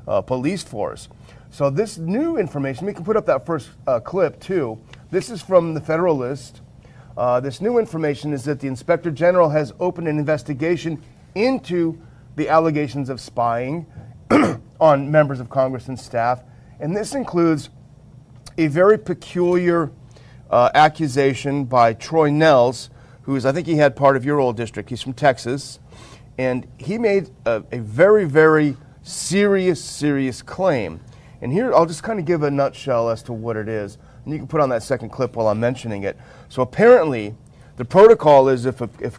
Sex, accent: male, American